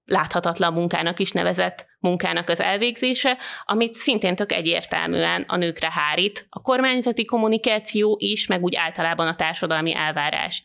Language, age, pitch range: Hungarian, 30-49, 175-220 Hz